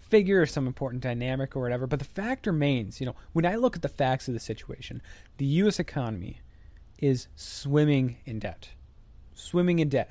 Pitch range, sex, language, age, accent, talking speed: 110-150 Hz, male, English, 30-49, American, 195 wpm